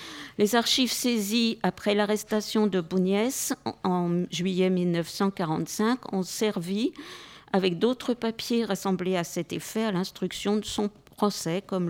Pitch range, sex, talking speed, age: 180-220 Hz, female, 130 wpm, 50-69